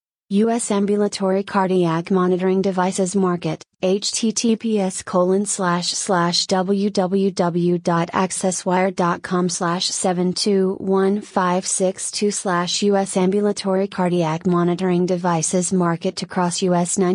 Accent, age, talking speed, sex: American, 30-49, 65 wpm, female